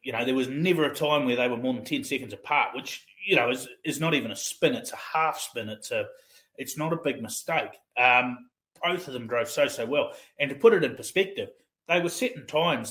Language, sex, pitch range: English, male, 125-160 Hz